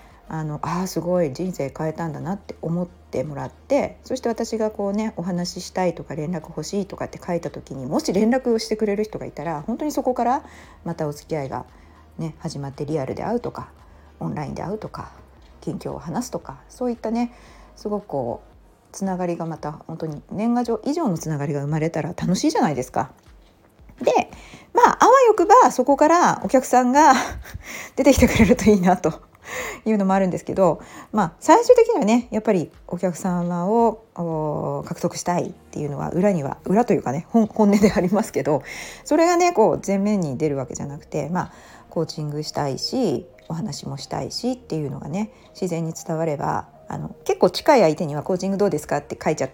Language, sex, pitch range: Japanese, female, 155-225 Hz